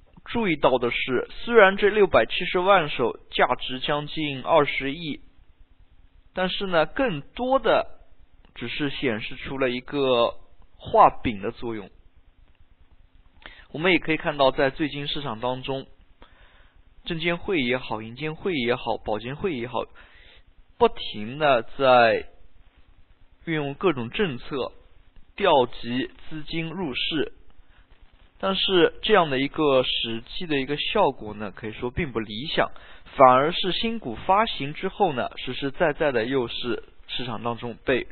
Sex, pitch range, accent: male, 110-160 Hz, native